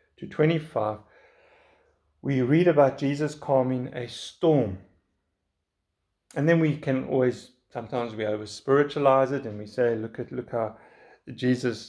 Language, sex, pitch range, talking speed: English, male, 110-165 Hz, 135 wpm